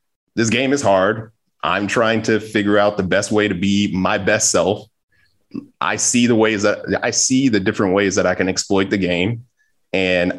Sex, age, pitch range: male, 20-39, 95-110 Hz